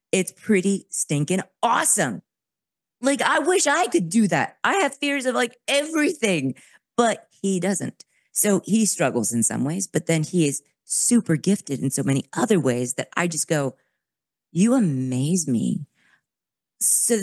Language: English